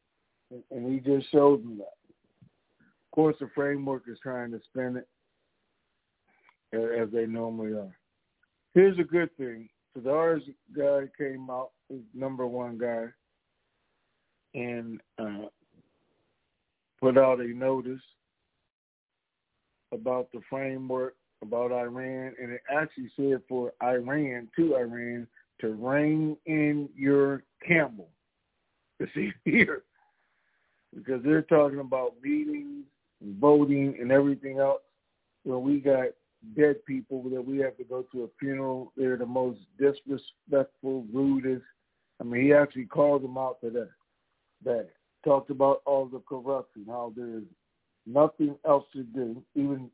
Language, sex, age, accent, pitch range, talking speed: English, male, 50-69, American, 120-140 Hz, 130 wpm